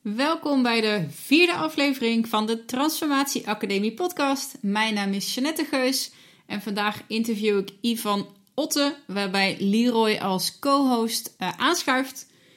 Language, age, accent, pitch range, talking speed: Dutch, 30-49, Dutch, 195-250 Hz, 125 wpm